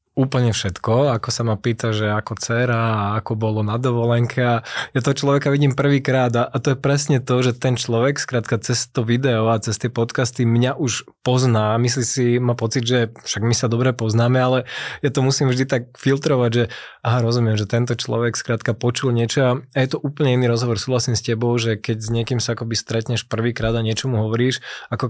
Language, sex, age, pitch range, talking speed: Slovak, male, 20-39, 115-130 Hz, 200 wpm